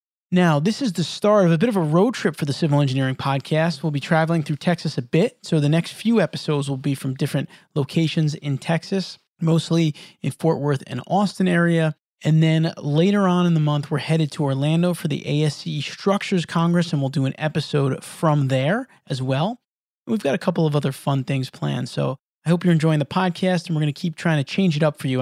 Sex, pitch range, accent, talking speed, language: male, 140-180 Hz, American, 230 wpm, English